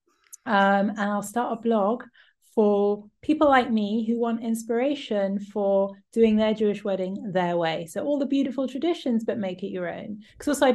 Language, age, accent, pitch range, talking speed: English, 30-49, British, 190-235 Hz, 180 wpm